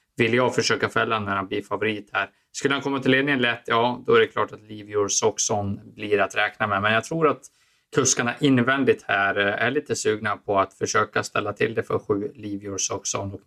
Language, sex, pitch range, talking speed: Swedish, male, 100-125 Hz, 210 wpm